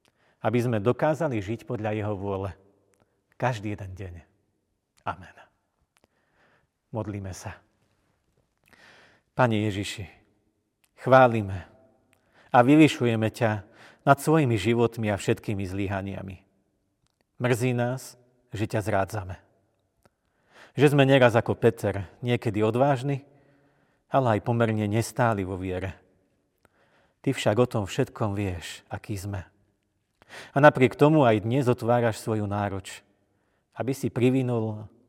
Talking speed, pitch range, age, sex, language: 105 wpm, 100-120 Hz, 40-59, male, Slovak